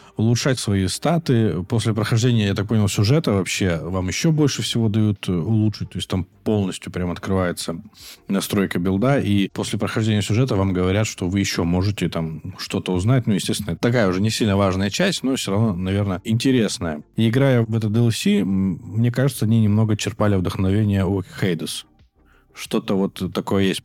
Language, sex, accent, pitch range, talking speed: Russian, male, native, 95-120 Hz, 170 wpm